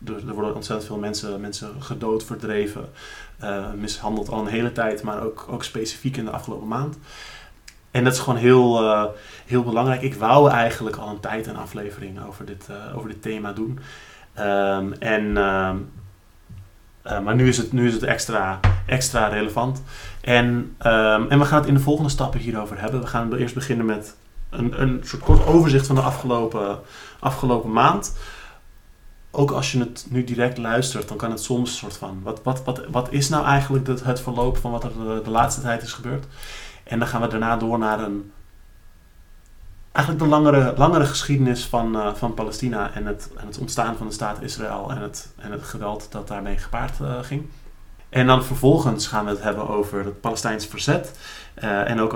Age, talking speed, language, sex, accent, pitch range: 30-49, 190 wpm, Dutch, male, Dutch, 105-130 Hz